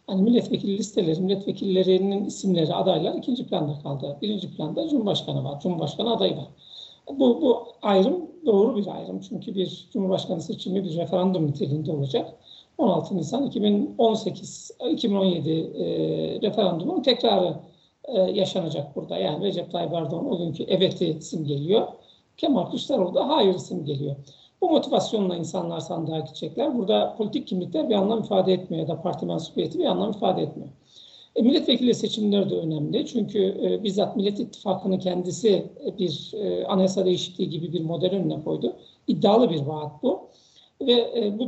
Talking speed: 145 wpm